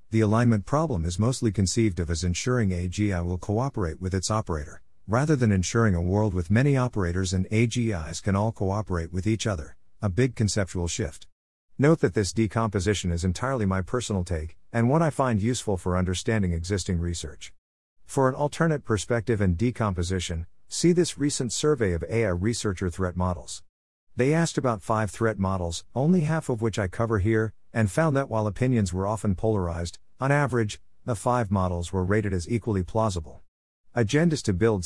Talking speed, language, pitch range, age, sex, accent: 175 wpm, English, 90-115 Hz, 50-69, male, American